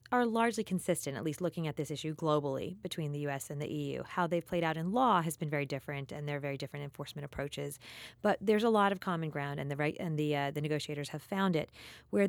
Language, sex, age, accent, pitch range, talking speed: English, female, 30-49, American, 145-175 Hz, 235 wpm